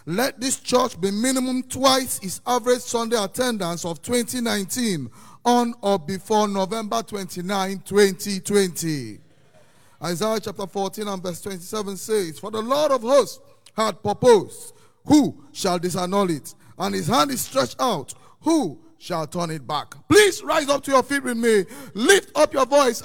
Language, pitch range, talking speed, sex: English, 200-275 Hz, 155 wpm, male